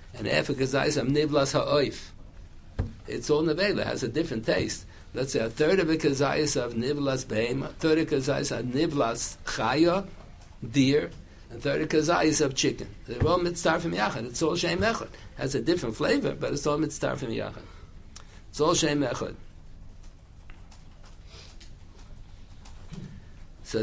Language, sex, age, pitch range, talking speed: English, male, 60-79, 100-145 Hz, 160 wpm